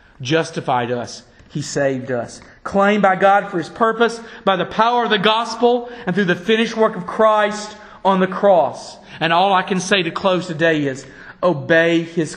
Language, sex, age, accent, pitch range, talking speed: English, male, 40-59, American, 130-165 Hz, 185 wpm